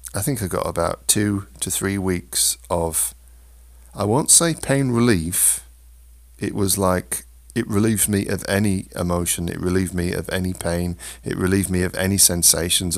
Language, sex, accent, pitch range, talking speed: English, male, British, 80-95 Hz, 165 wpm